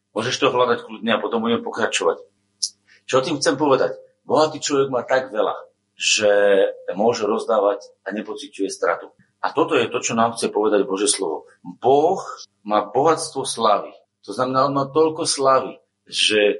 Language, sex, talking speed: Slovak, male, 160 wpm